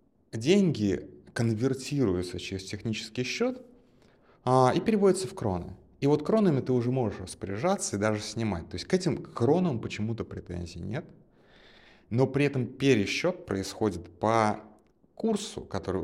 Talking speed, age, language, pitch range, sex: 135 wpm, 30-49, Russian, 90-125 Hz, male